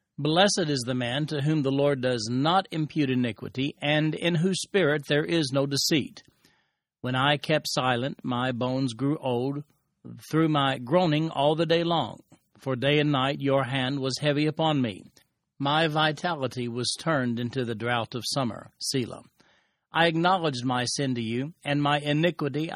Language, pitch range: English, 135-165 Hz